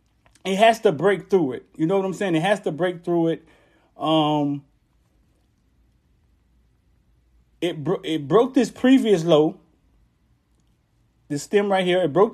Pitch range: 155-260 Hz